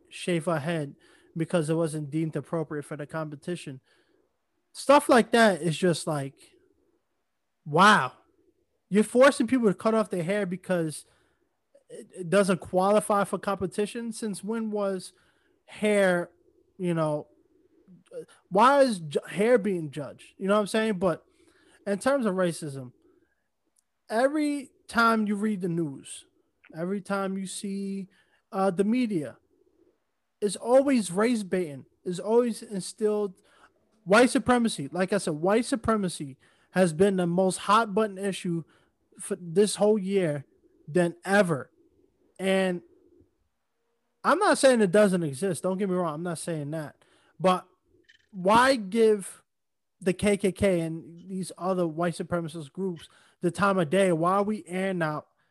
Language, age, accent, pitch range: English, 20-39, American, 175-230 Hz